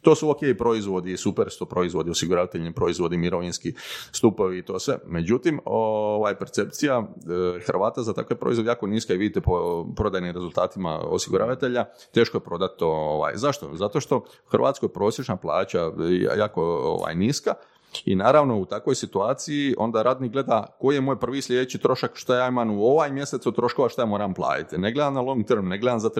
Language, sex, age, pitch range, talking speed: Croatian, male, 30-49, 105-140 Hz, 180 wpm